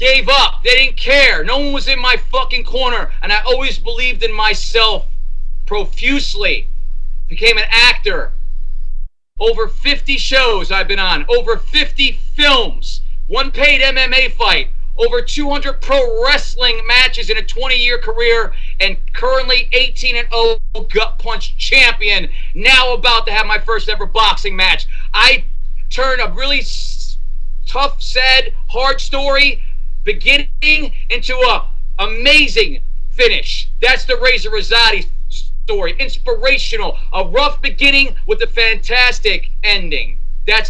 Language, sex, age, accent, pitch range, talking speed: English, male, 40-59, American, 215-285 Hz, 130 wpm